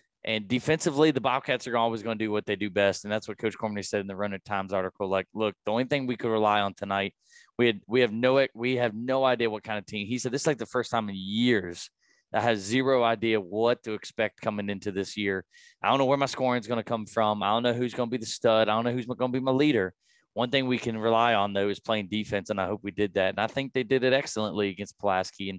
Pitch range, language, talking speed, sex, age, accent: 105-130 Hz, English, 290 wpm, male, 20-39, American